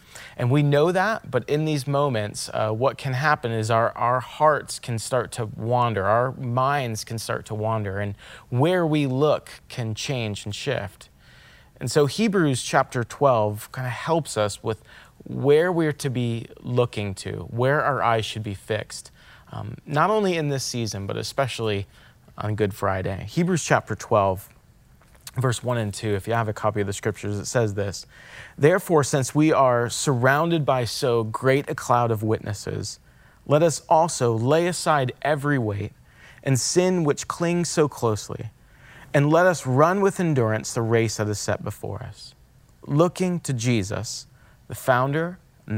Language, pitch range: English, 110-145 Hz